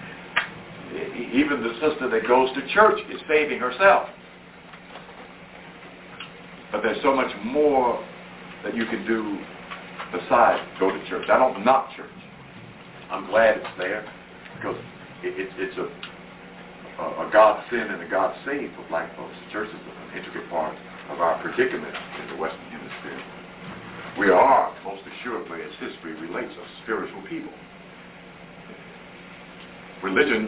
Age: 60-79